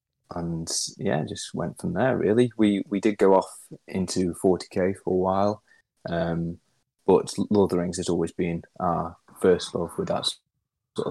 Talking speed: 175 wpm